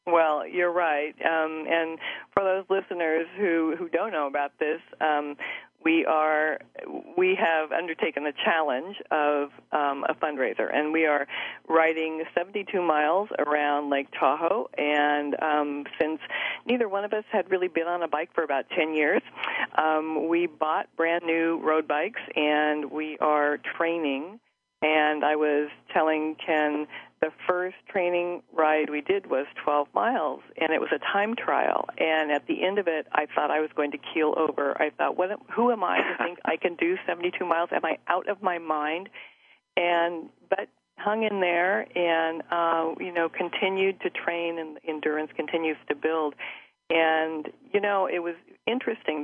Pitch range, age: 150-175 Hz, 40-59